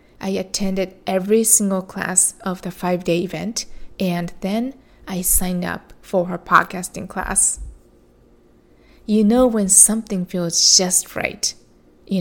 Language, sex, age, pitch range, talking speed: English, female, 20-39, 170-210 Hz, 130 wpm